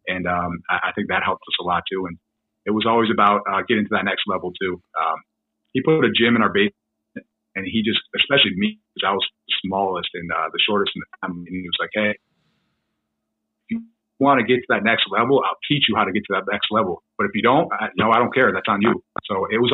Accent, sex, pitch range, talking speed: American, male, 100-120 Hz, 265 wpm